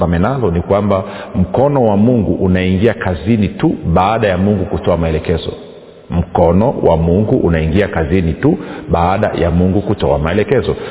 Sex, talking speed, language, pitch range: male, 140 wpm, Swahili, 90-110 Hz